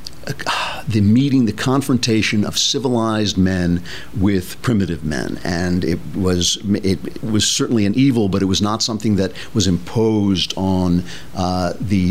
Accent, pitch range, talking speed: American, 95-115 Hz, 145 wpm